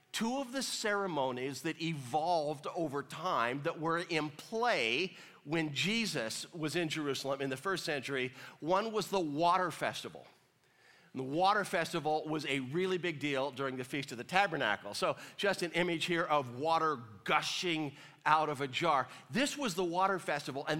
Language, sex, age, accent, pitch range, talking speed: English, male, 50-69, American, 150-200 Hz, 170 wpm